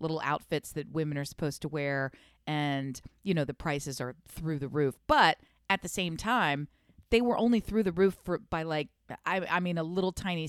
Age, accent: 40-59, American